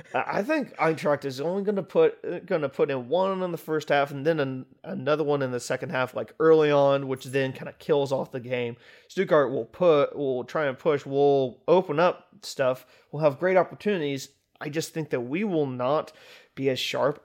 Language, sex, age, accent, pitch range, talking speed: English, male, 30-49, American, 125-150 Hz, 215 wpm